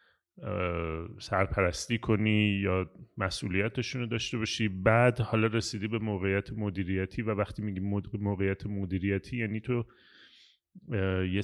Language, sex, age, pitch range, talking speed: Persian, male, 30-49, 95-115 Hz, 110 wpm